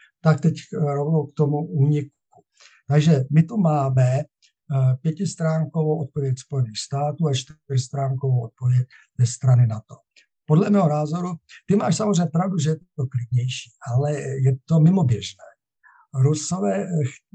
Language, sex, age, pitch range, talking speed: Czech, male, 60-79, 130-155 Hz, 125 wpm